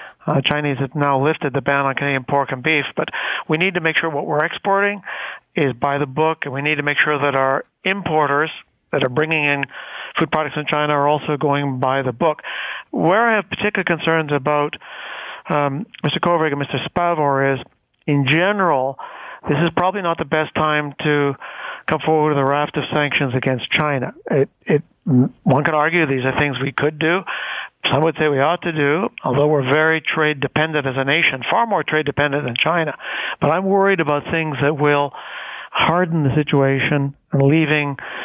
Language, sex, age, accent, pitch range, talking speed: English, male, 60-79, American, 140-160 Hz, 190 wpm